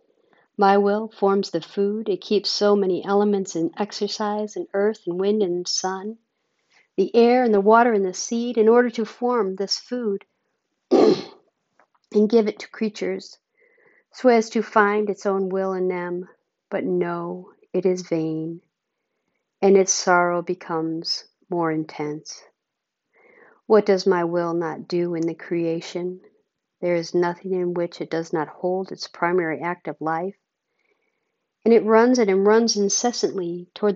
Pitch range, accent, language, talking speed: 180-225 Hz, American, English, 155 wpm